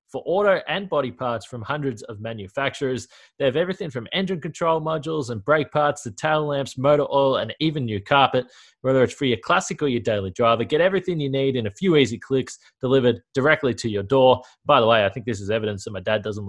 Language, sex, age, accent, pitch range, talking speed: English, male, 20-39, Australian, 115-145 Hz, 230 wpm